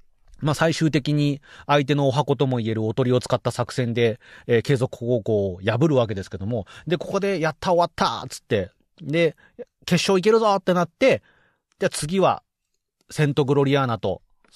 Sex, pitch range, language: male, 115-170 Hz, Japanese